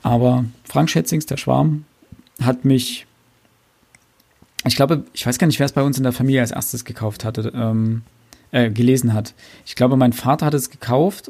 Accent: German